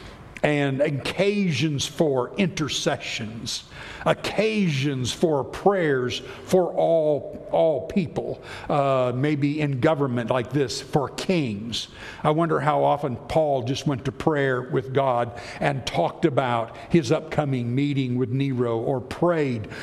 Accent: American